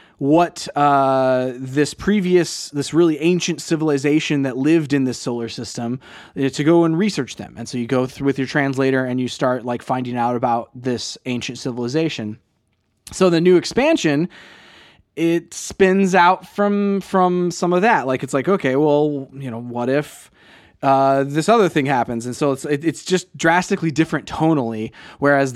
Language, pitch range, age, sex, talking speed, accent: English, 130-165 Hz, 20-39, male, 170 wpm, American